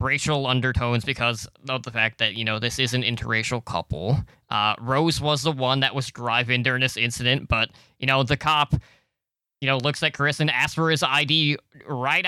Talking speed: 200 wpm